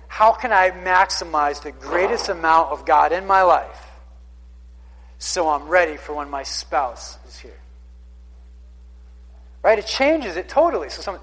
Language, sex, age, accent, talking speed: English, male, 40-59, American, 150 wpm